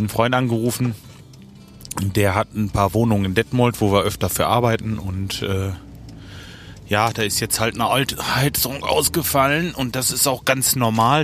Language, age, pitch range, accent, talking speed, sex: German, 30-49, 100-130 Hz, German, 170 wpm, male